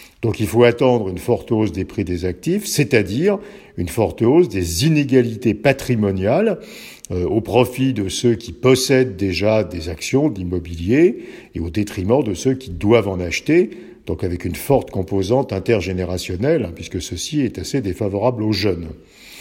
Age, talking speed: 50-69, 160 wpm